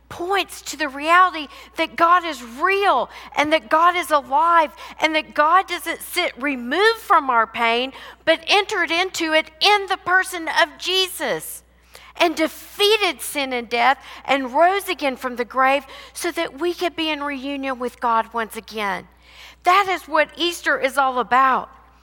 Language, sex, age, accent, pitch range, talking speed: English, female, 50-69, American, 230-335 Hz, 165 wpm